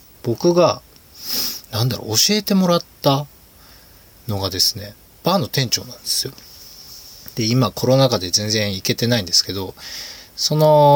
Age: 20-39